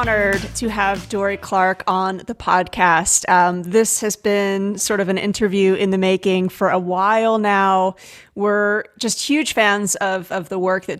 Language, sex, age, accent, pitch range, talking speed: English, female, 30-49, American, 185-215 Hz, 175 wpm